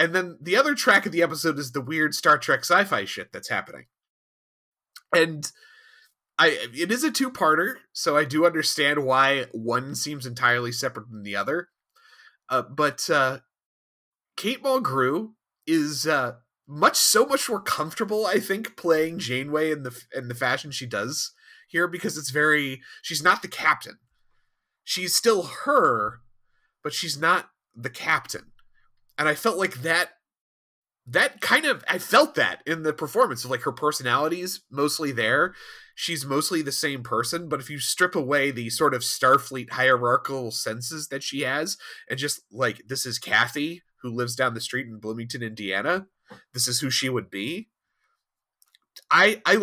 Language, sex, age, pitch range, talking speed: English, male, 30-49, 125-180 Hz, 165 wpm